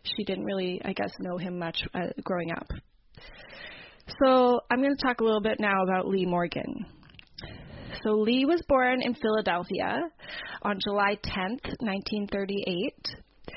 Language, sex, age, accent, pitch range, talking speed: English, female, 30-49, American, 195-230 Hz, 145 wpm